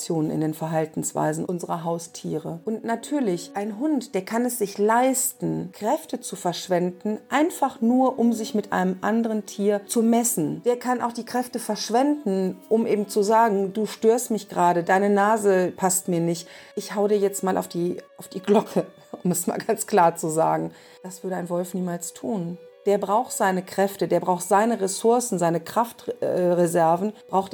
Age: 40-59